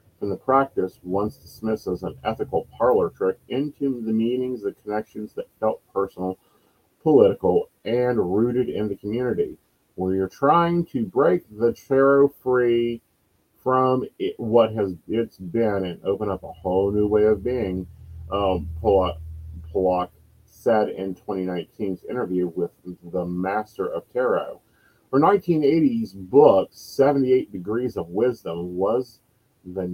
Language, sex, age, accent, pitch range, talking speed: English, male, 40-59, American, 95-125 Hz, 135 wpm